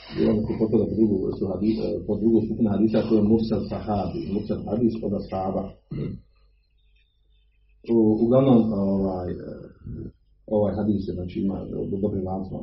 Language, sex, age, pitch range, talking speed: Croatian, male, 40-59, 100-115 Hz, 70 wpm